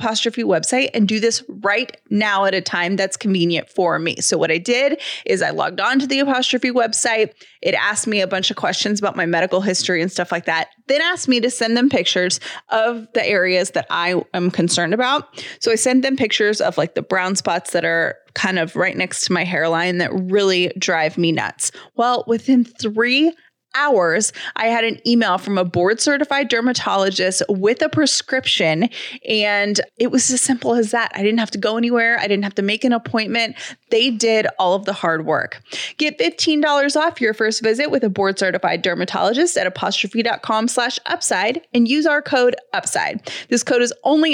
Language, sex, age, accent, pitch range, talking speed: English, female, 20-39, American, 195-255 Hz, 200 wpm